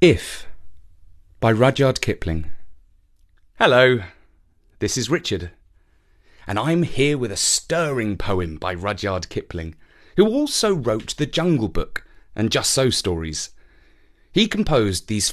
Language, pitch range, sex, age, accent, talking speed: English, 85-130 Hz, male, 30-49, British, 120 wpm